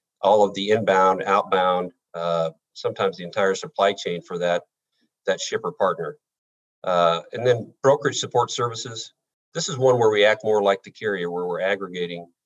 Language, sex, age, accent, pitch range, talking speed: English, male, 50-69, American, 95-125 Hz, 170 wpm